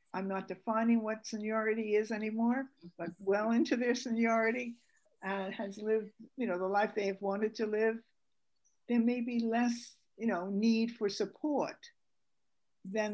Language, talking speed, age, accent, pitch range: English, 160 wpm, 60-79, American, 195-235 Hz